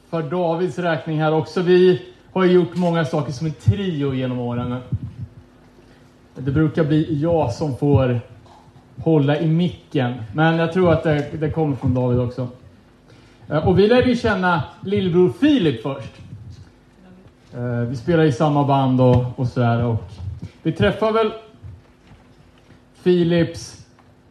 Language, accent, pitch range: Swedish, Norwegian, 125-180 Hz